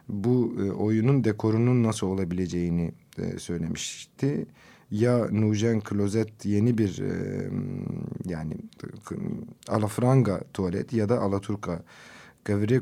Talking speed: 90 wpm